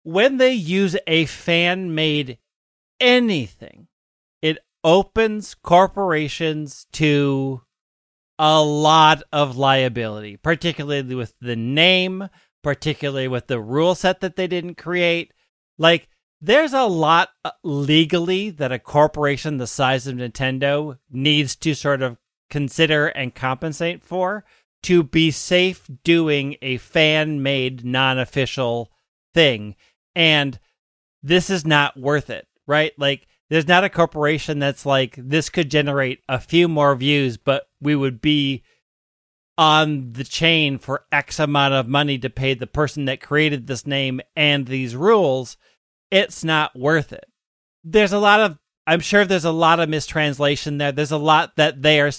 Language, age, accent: English, 40-59, American